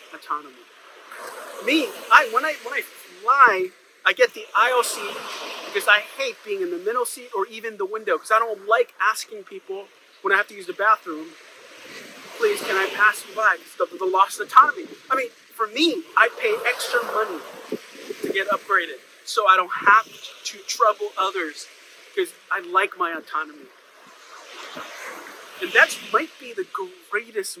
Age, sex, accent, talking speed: 30-49, male, American, 170 wpm